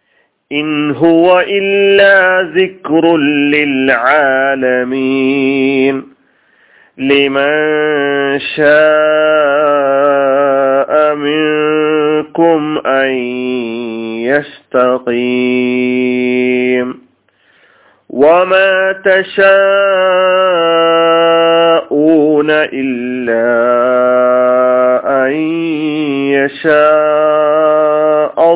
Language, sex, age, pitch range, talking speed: Malayalam, male, 40-59, 125-155 Hz, 30 wpm